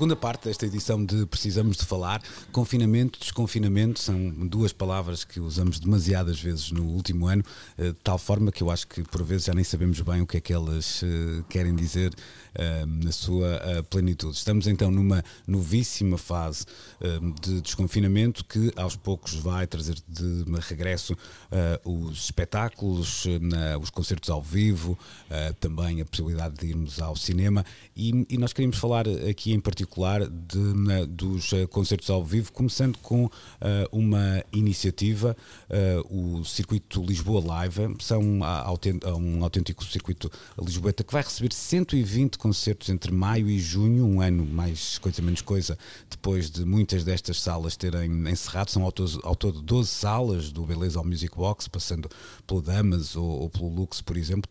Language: Portuguese